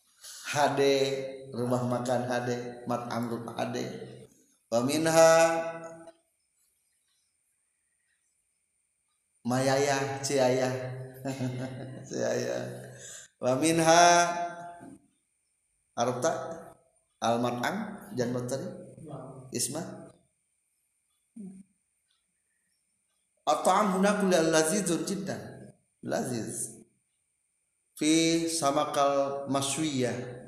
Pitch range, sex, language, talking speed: 125-165 Hz, male, Indonesian, 45 wpm